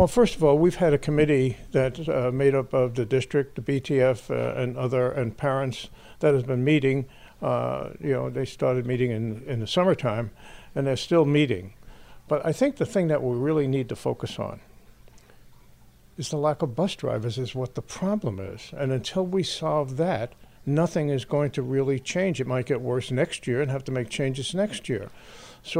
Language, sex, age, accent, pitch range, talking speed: English, male, 60-79, American, 125-155 Hz, 200 wpm